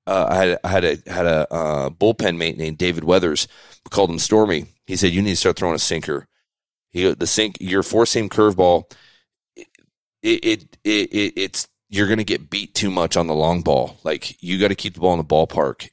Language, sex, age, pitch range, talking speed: English, male, 30-49, 90-115 Hz, 225 wpm